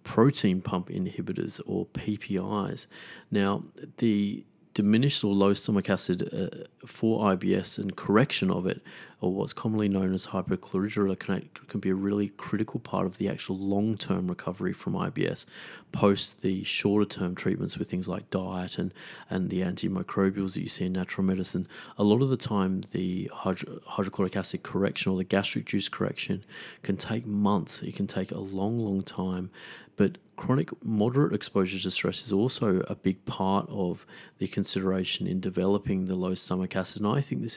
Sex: male